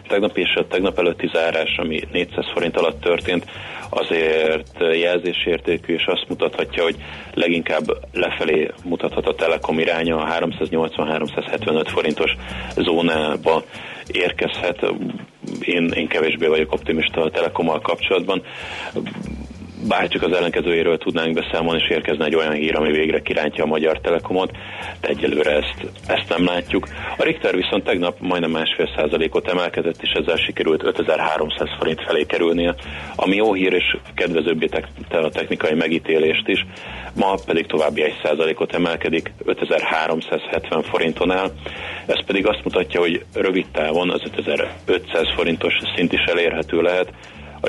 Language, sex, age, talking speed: Hungarian, male, 30-49, 135 wpm